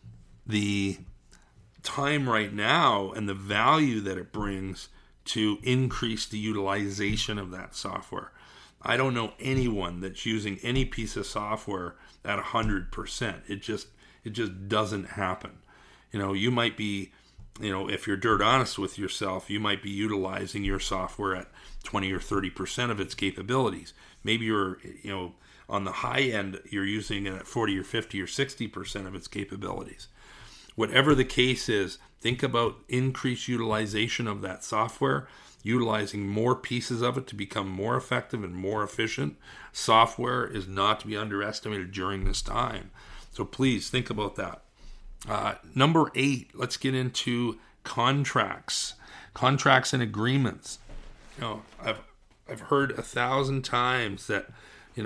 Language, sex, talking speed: English, male, 150 wpm